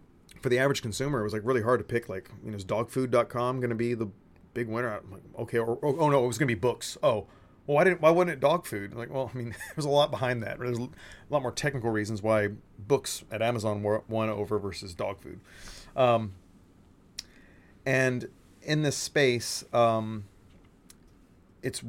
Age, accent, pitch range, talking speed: 30-49, American, 100-125 Hz, 205 wpm